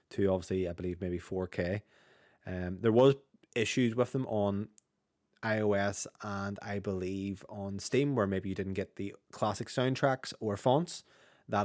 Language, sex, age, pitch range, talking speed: English, male, 20-39, 100-120 Hz, 155 wpm